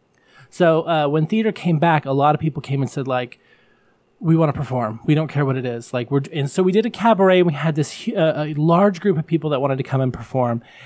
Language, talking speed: English, 265 wpm